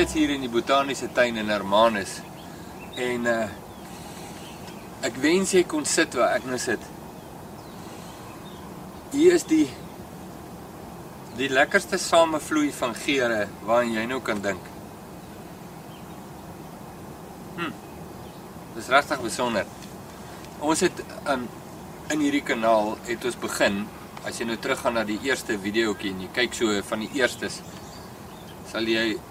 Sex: male